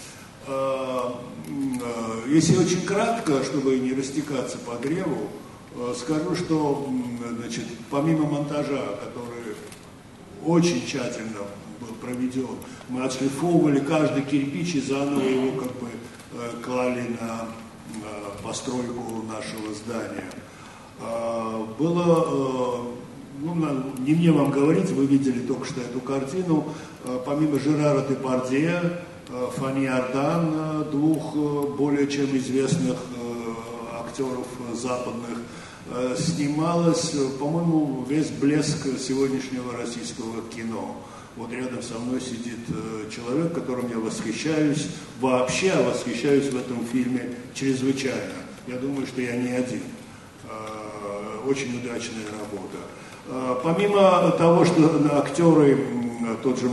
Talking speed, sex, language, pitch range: 95 wpm, male, Russian, 120-145 Hz